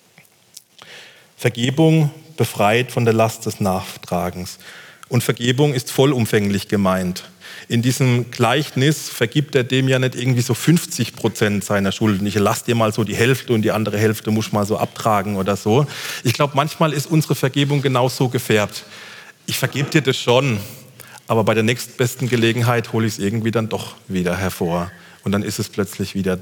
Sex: male